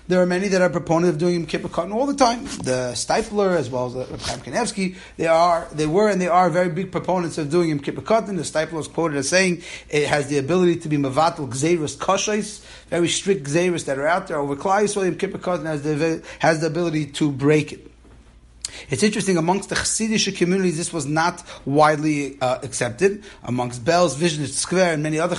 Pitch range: 140-180 Hz